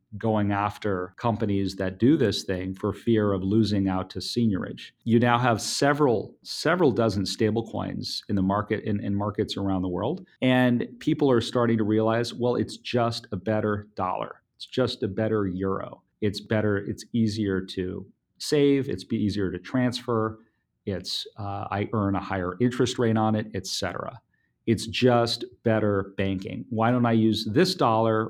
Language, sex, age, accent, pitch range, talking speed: English, male, 40-59, American, 100-120 Hz, 165 wpm